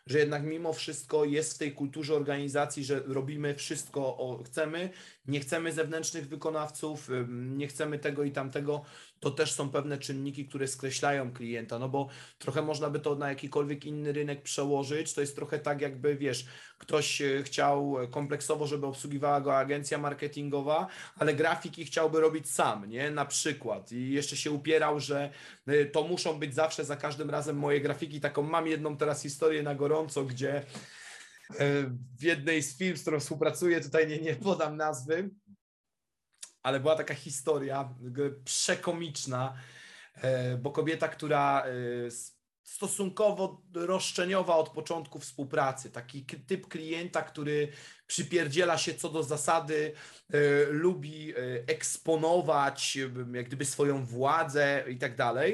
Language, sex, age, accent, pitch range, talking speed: Polish, male, 30-49, native, 140-160 Hz, 140 wpm